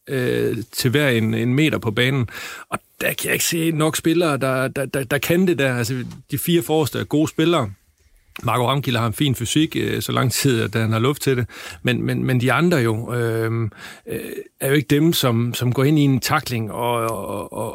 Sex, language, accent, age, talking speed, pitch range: male, Danish, native, 30-49, 215 wpm, 115-140 Hz